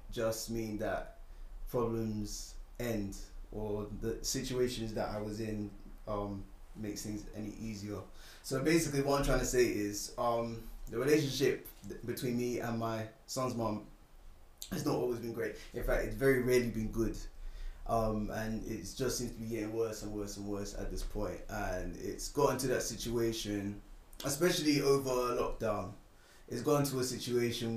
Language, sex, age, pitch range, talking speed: English, male, 20-39, 105-120 Hz, 165 wpm